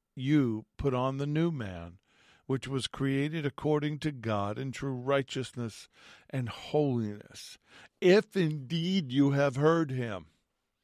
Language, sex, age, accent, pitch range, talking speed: English, male, 50-69, American, 120-145 Hz, 125 wpm